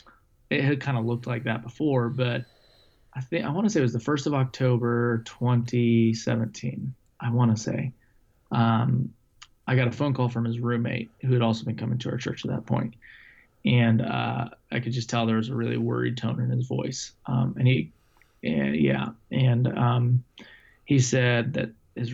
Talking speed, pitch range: 195 wpm, 115-130 Hz